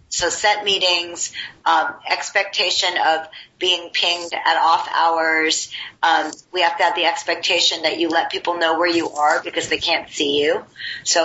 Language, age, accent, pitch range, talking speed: English, 40-59, American, 160-190 Hz, 170 wpm